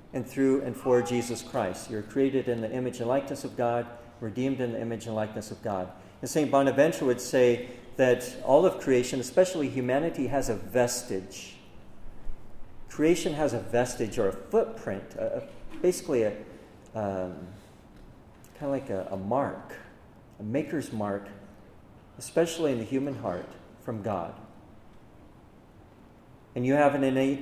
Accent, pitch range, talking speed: American, 110-135 Hz, 155 wpm